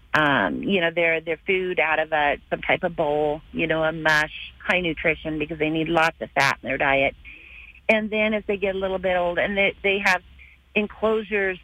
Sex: female